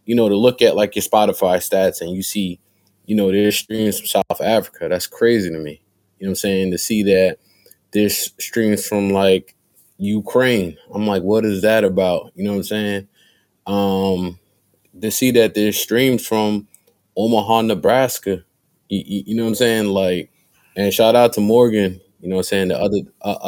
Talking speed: 190 wpm